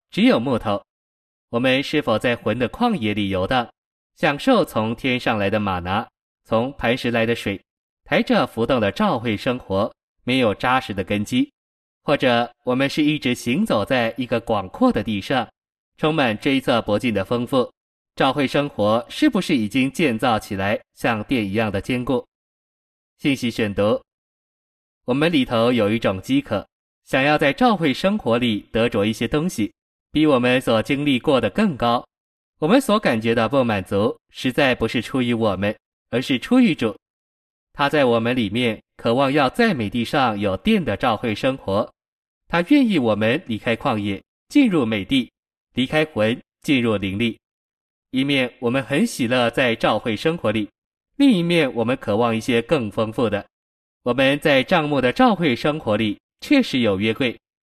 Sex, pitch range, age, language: male, 110-160 Hz, 20-39, Chinese